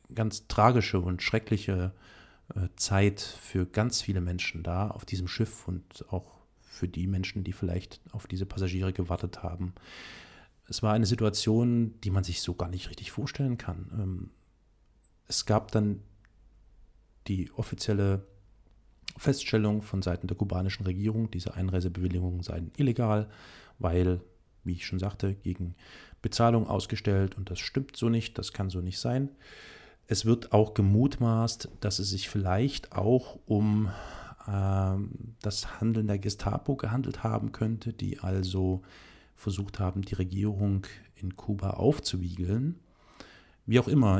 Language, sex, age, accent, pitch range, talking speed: German, male, 40-59, German, 90-110 Hz, 135 wpm